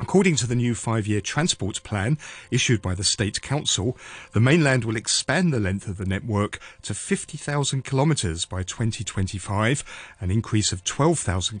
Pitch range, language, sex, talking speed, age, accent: 95-130 Hz, English, male, 155 wpm, 40-59, British